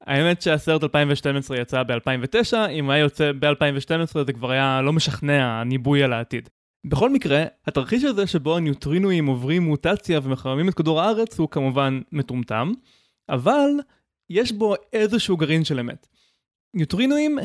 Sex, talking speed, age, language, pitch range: male, 140 wpm, 20-39, Hebrew, 140-205 Hz